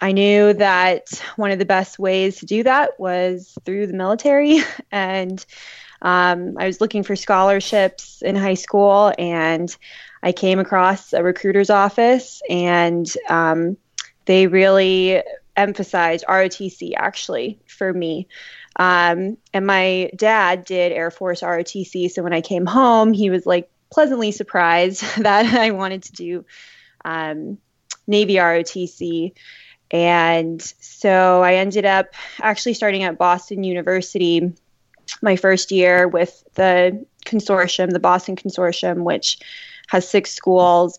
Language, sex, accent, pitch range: English, female, American, 180-205 Hz